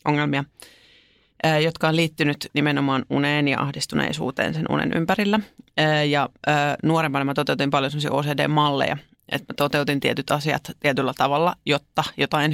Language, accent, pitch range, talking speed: Finnish, native, 145-165 Hz, 120 wpm